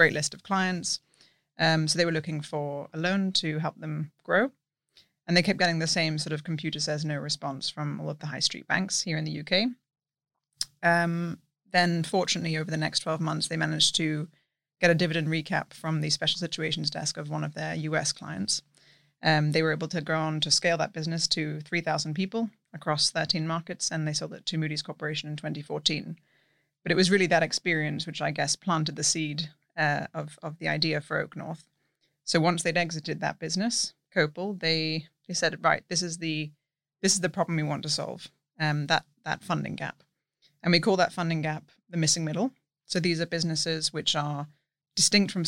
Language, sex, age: English, female, 20-39